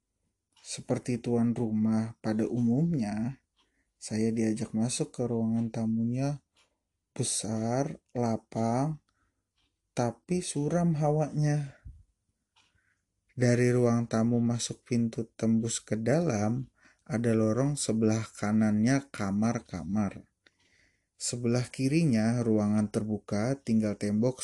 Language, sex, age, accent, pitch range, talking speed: Indonesian, male, 20-39, native, 105-125 Hz, 85 wpm